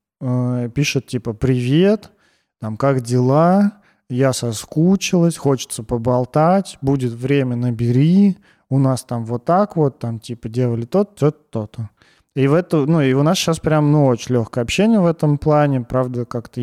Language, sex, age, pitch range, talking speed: Russian, male, 30-49, 120-145 Hz, 155 wpm